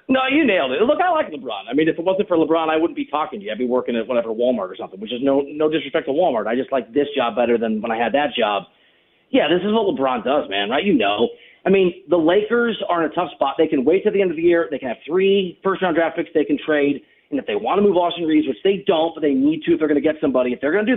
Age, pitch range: 40-59, 135-170 Hz